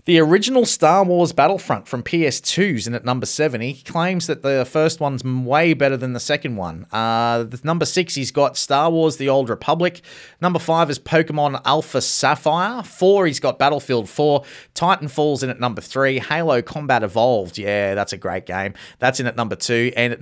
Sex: male